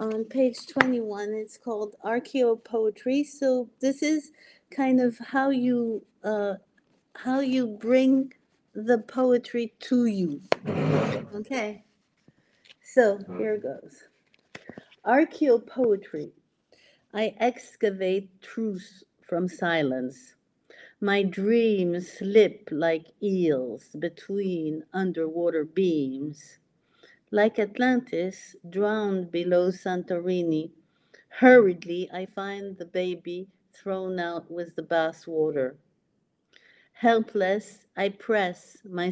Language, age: English, 50-69